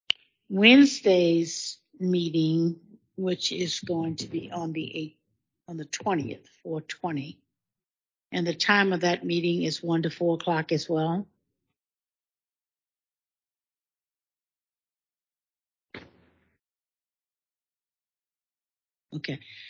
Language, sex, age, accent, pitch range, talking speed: English, female, 60-79, American, 160-185 Hz, 85 wpm